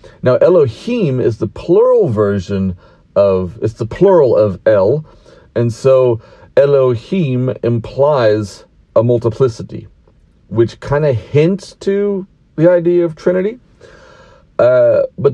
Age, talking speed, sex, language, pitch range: 40-59, 115 wpm, male, English, 110-150 Hz